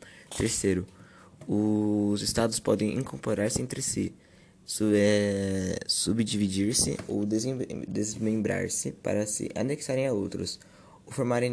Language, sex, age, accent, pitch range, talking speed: Portuguese, male, 20-39, Brazilian, 105-120 Hz, 105 wpm